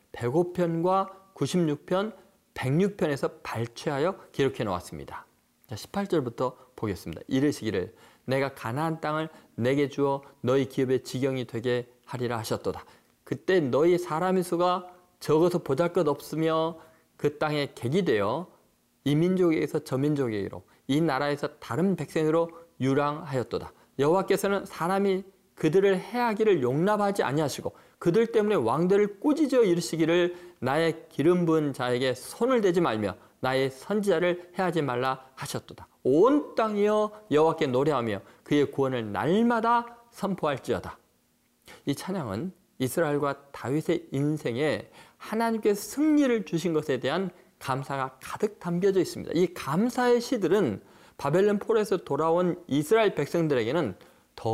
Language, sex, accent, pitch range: Korean, male, native, 140-195 Hz